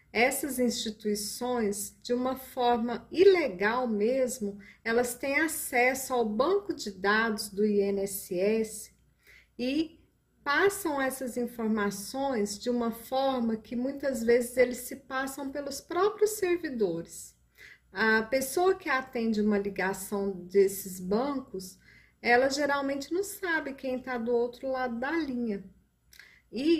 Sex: female